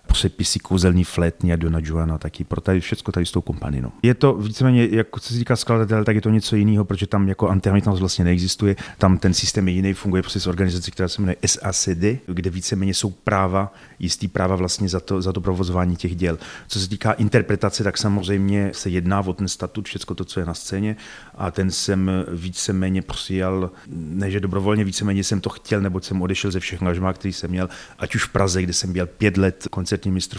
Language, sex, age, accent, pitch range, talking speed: Czech, male, 30-49, native, 90-100 Hz, 210 wpm